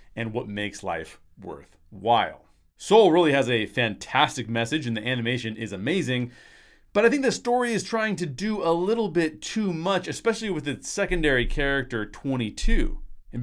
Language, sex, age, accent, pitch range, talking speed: English, male, 30-49, American, 115-170 Hz, 165 wpm